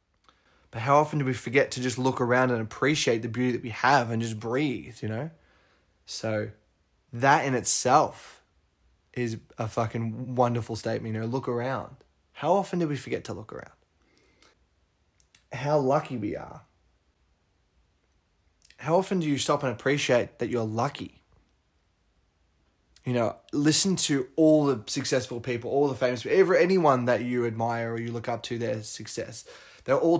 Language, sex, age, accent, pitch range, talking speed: English, male, 20-39, Australian, 110-135 Hz, 165 wpm